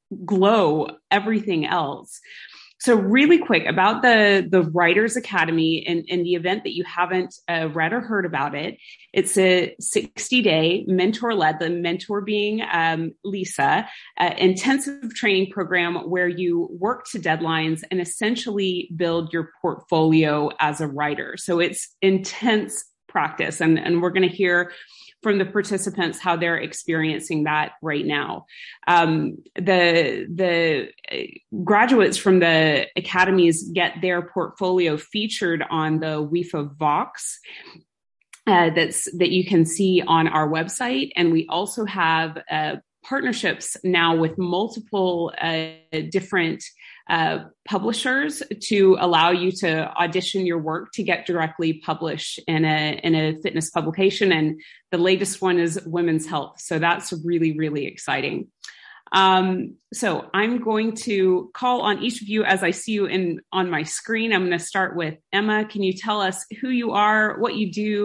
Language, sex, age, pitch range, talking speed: English, female, 30-49, 165-205 Hz, 150 wpm